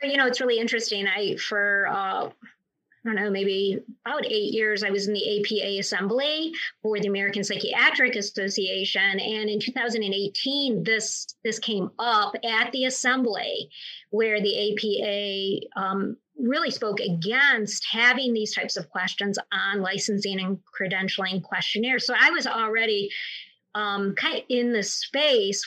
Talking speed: 145 wpm